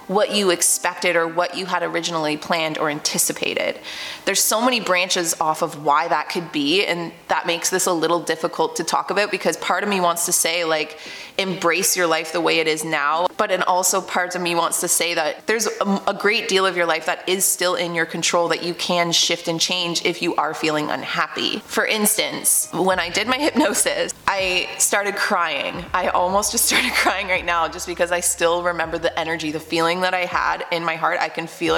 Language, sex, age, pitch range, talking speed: English, female, 20-39, 165-190 Hz, 220 wpm